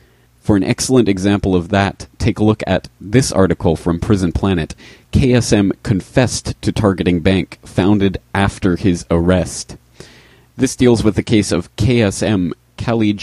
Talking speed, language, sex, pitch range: 145 wpm, English, male, 90-110 Hz